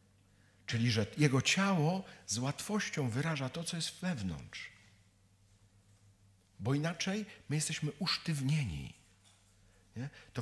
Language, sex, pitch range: Polish, male, 100-160 Hz